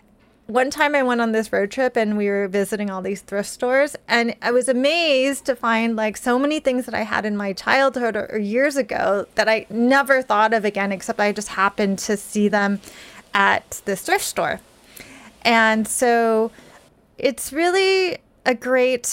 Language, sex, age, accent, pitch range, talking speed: English, female, 30-49, American, 210-260 Hz, 180 wpm